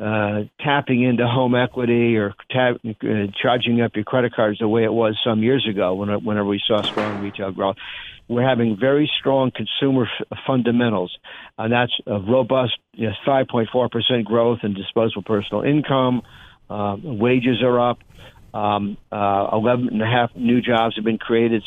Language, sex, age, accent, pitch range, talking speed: English, male, 50-69, American, 110-130 Hz, 145 wpm